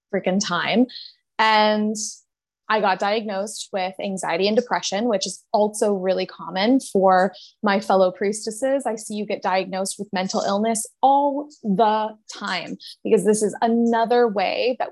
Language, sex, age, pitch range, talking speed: English, female, 20-39, 190-220 Hz, 145 wpm